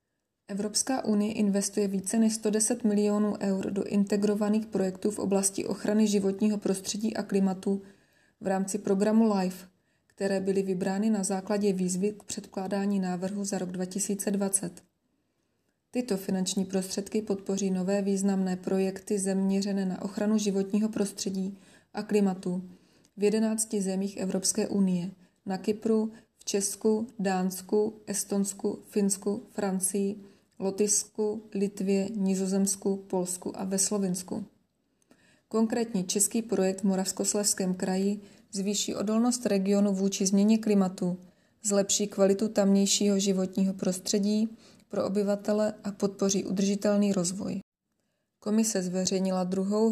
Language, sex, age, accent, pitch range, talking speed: Czech, female, 20-39, native, 195-210 Hz, 115 wpm